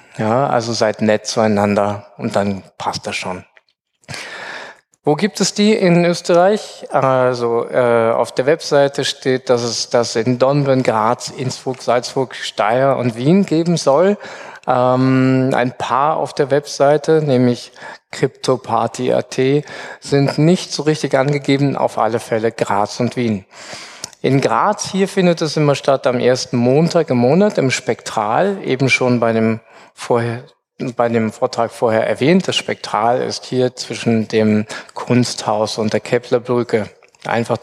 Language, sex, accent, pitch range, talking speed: German, male, German, 115-150 Hz, 140 wpm